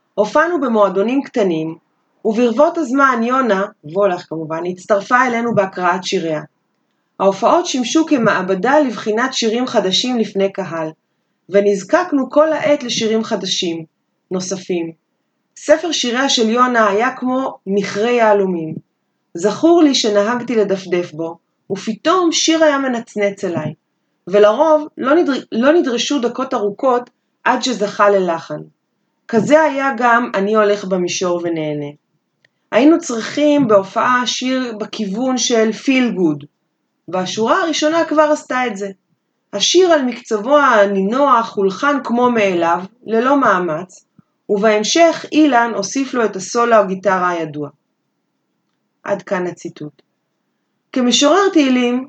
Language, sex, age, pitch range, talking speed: Hebrew, female, 30-49, 195-265 Hz, 110 wpm